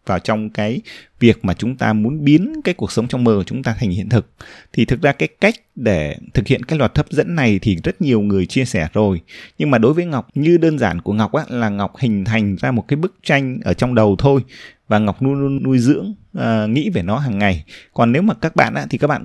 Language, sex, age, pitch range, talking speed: Vietnamese, male, 20-39, 100-145 Hz, 270 wpm